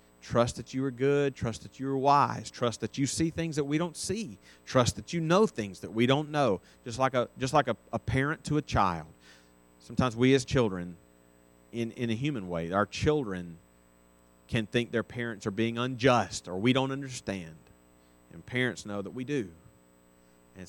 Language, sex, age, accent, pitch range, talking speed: English, male, 40-59, American, 80-120 Hz, 195 wpm